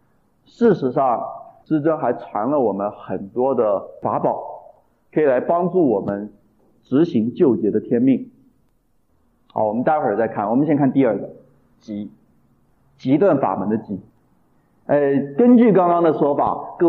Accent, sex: native, male